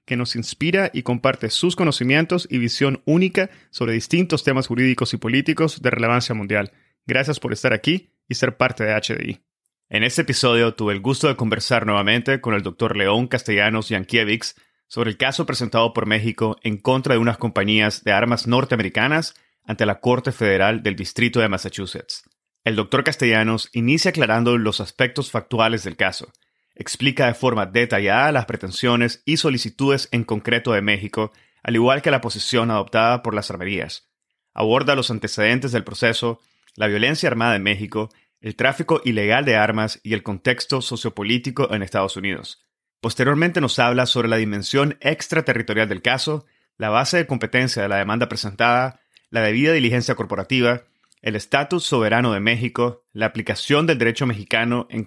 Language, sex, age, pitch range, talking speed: Spanish, male, 30-49, 110-130 Hz, 165 wpm